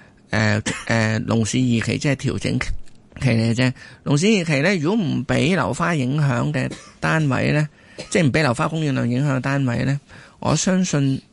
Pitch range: 115-145 Hz